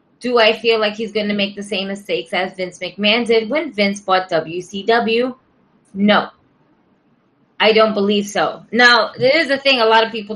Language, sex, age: English, female, 20-39